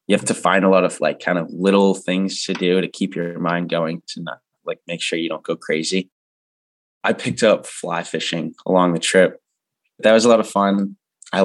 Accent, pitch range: American, 85-100 Hz